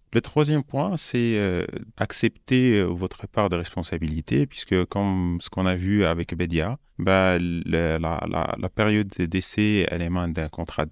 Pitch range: 90-115 Hz